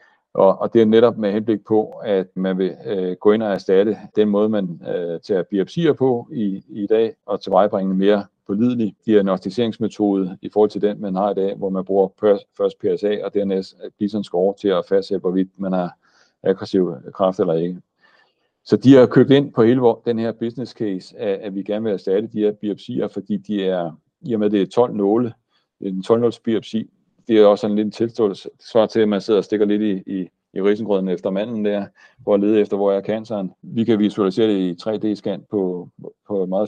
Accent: native